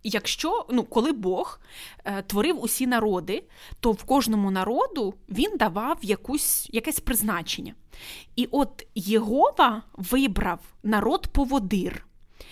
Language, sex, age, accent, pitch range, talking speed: Ukrainian, female, 20-39, native, 200-250 Hz, 105 wpm